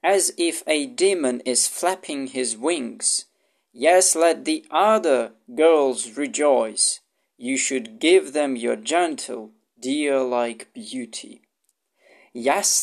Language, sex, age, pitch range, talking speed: English, male, 40-59, 130-200 Hz, 110 wpm